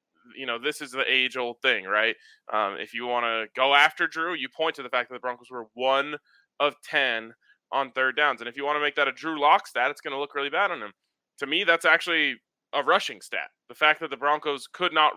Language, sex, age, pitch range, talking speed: English, male, 20-39, 120-150 Hz, 255 wpm